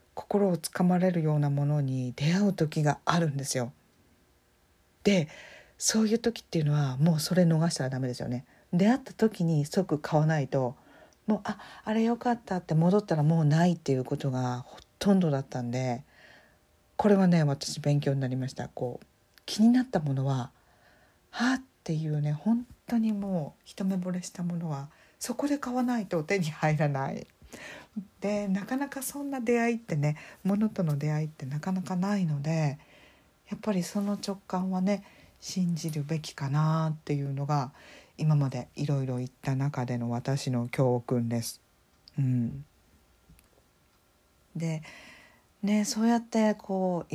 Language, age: Japanese, 50-69